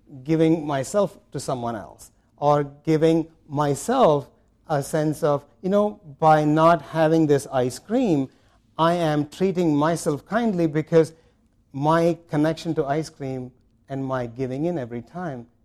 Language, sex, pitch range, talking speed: English, male, 125-160 Hz, 140 wpm